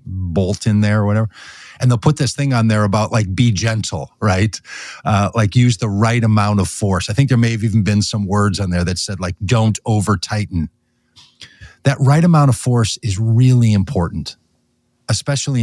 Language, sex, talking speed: English, male, 195 wpm